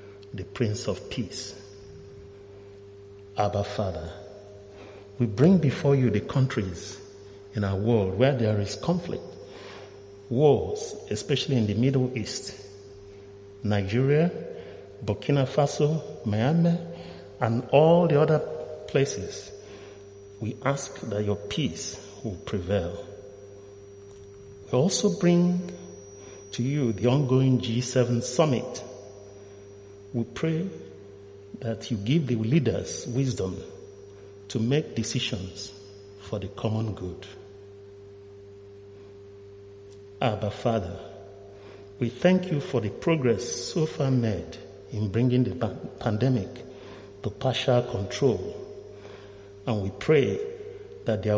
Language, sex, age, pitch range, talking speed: English, male, 60-79, 100-130 Hz, 105 wpm